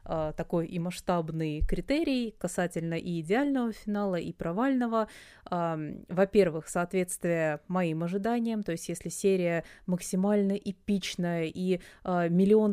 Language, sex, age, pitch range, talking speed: Russian, female, 20-39, 170-200 Hz, 105 wpm